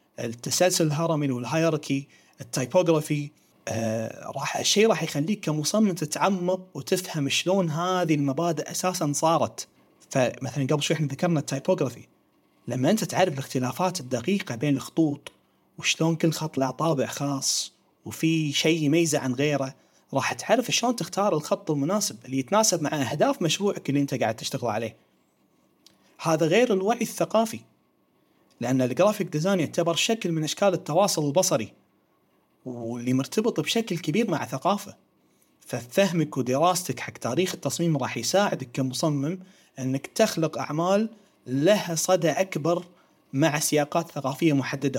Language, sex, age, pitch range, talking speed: Arabic, male, 30-49, 130-170 Hz, 125 wpm